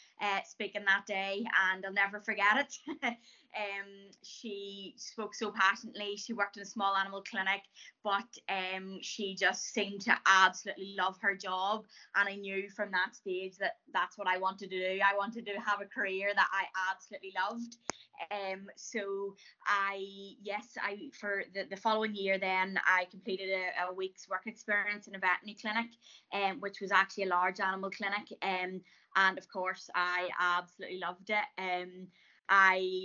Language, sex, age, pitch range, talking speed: English, female, 20-39, 190-210 Hz, 175 wpm